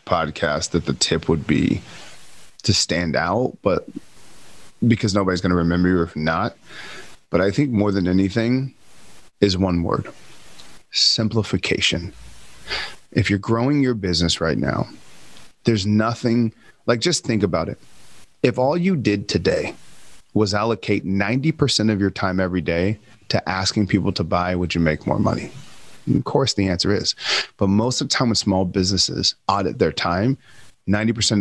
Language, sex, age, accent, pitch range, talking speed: English, male, 30-49, American, 95-115 Hz, 155 wpm